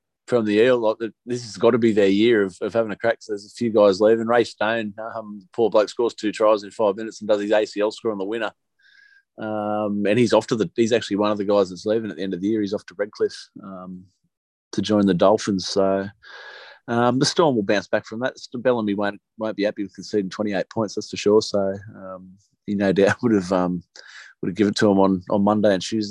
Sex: male